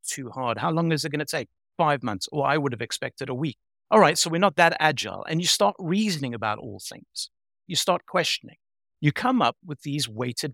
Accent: British